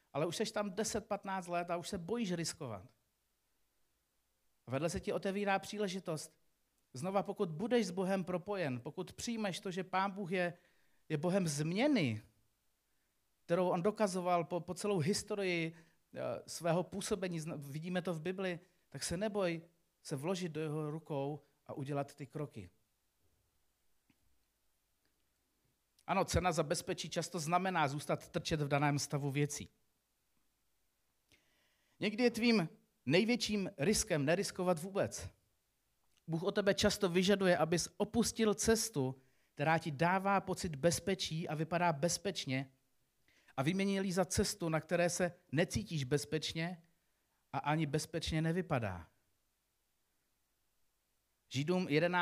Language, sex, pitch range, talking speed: Czech, male, 145-195 Hz, 120 wpm